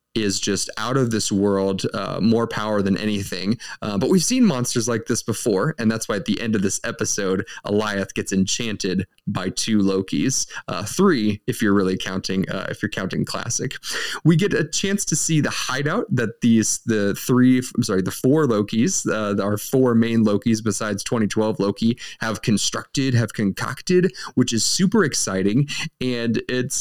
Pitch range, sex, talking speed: 100-125 Hz, male, 180 wpm